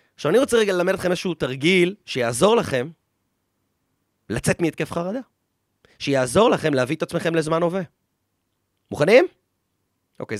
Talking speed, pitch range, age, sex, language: 125 wpm, 125-185 Hz, 30-49, male, Hebrew